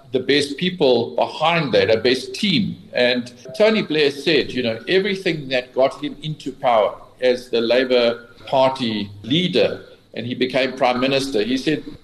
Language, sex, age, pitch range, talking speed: English, male, 50-69, 125-170 Hz, 160 wpm